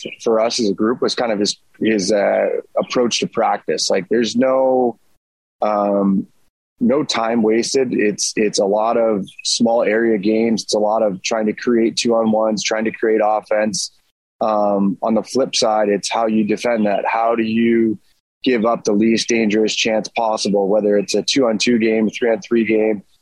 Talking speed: 190 wpm